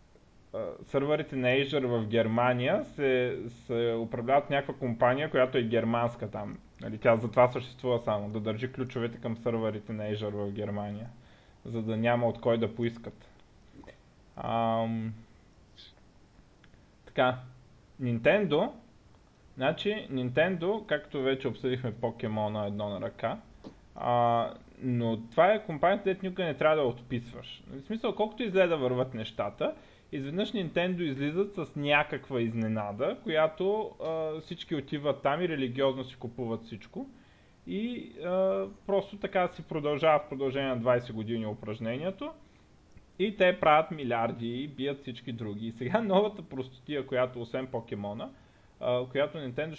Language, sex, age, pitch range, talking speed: Bulgarian, male, 20-39, 115-155 Hz, 135 wpm